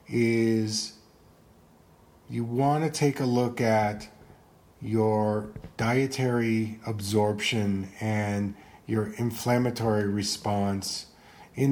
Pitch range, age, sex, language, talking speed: 110-130 Hz, 40-59, male, English, 80 wpm